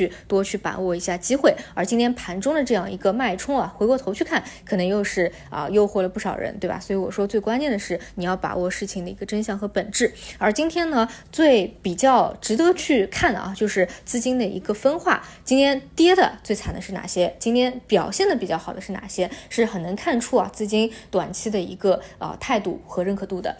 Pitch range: 185-230 Hz